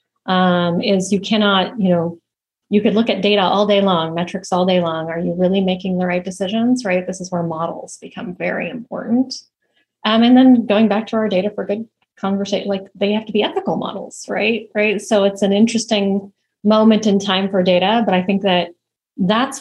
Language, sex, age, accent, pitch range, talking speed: English, female, 30-49, American, 180-205 Hz, 205 wpm